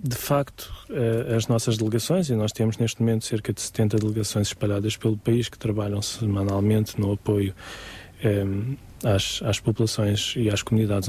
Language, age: Portuguese, 20-39